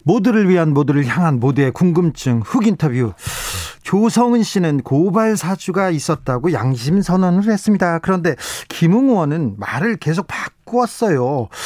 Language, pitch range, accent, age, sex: Korean, 140-205 Hz, native, 40-59, male